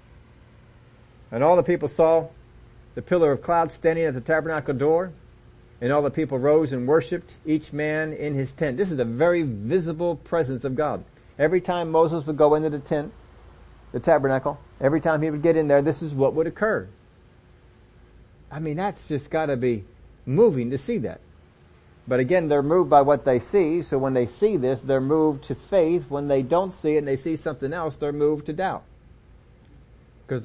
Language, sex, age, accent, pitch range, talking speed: English, male, 50-69, American, 125-165 Hz, 195 wpm